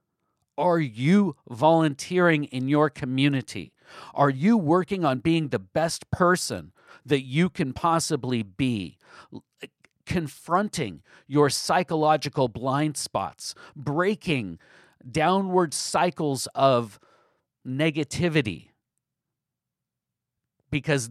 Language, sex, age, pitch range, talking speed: English, male, 50-69, 135-175 Hz, 85 wpm